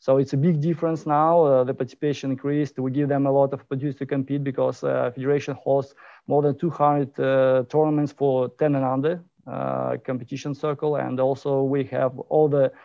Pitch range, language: 135-150 Hz, English